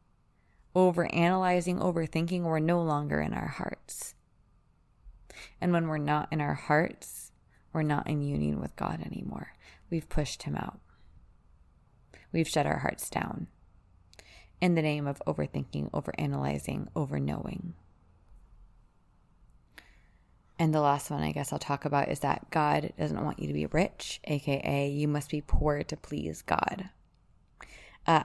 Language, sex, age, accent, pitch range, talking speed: English, female, 20-39, American, 135-170 Hz, 140 wpm